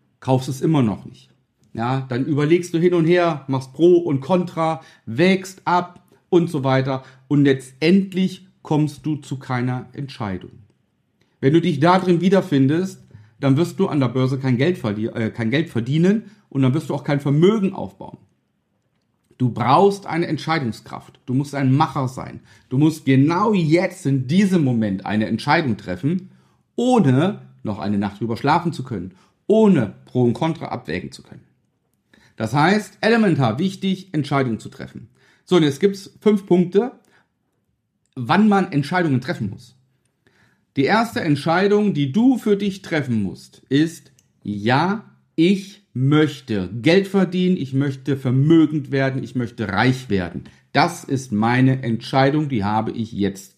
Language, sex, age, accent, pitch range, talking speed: German, male, 40-59, German, 120-180 Hz, 150 wpm